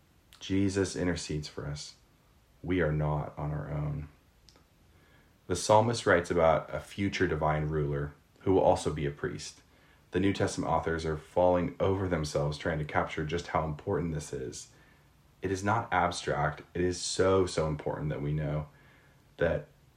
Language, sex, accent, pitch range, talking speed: English, male, American, 75-90 Hz, 160 wpm